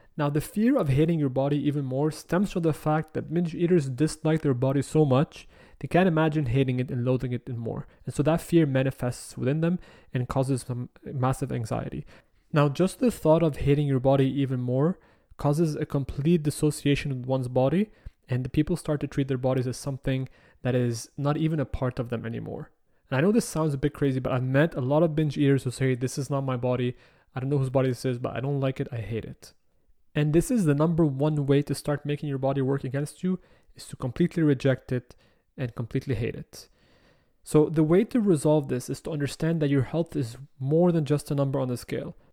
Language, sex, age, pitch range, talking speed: English, male, 20-39, 130-155 Hz, 230 wpm